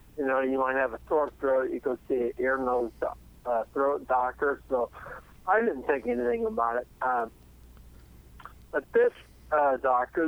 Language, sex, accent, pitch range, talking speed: English, male, American, 115-140 Hz, 170 wpm